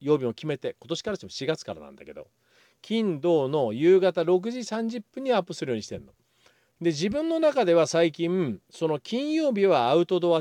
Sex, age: male, 40-59